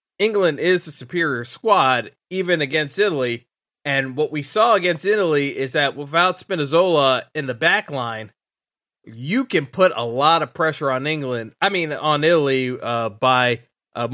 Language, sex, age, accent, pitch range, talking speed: English, male, 30-49, American, 140-185 Hz, 160 wpm